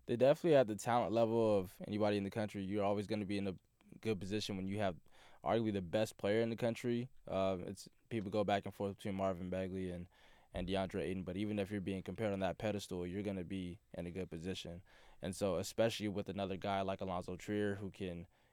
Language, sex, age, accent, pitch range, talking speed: English, male, 20-39, American, 100-115 Hz, 235 wpm